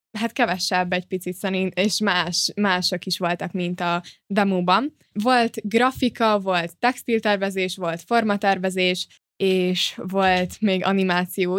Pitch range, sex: 185-220 Hz, female